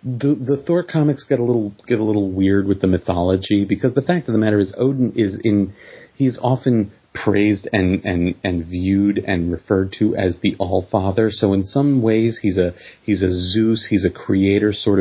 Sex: male